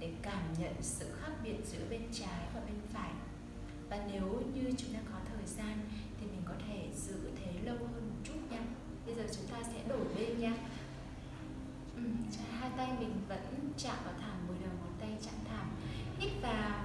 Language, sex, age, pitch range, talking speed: Vietnamese, female, 10-29, 215-260 Hz, 195 wpm